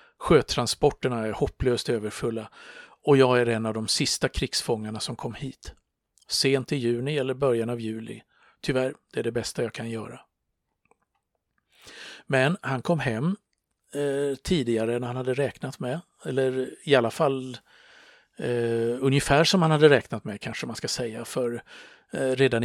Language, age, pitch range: Swedish, 50-69, 110-130 Hz